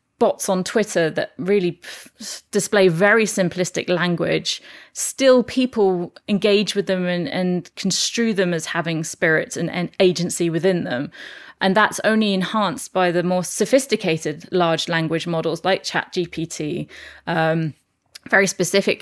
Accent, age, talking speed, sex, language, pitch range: British, 20-39, 135 wpm, female, German, 170-200 Hz